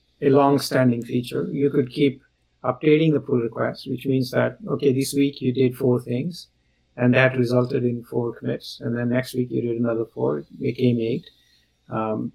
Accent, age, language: Indian, 50-69, English